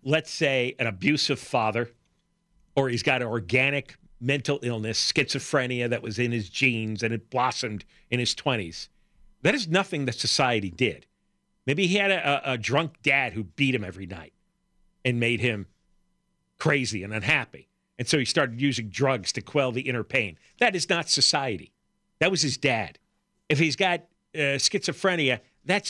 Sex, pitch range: male, 130-185 Hz